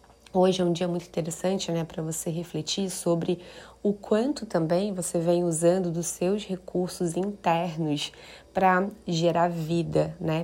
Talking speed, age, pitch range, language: 145 wpm, 20-39, 170-190 Hz, Portuguese